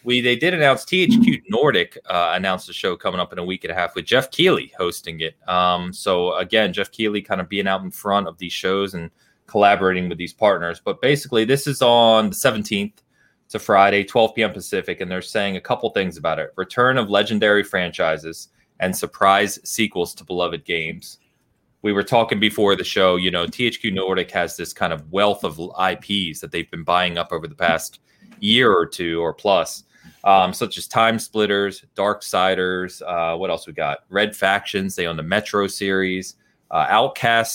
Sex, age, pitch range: male, 20-39, 90-110 Hz